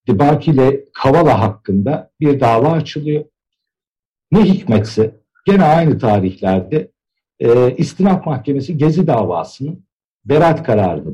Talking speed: 100 wpm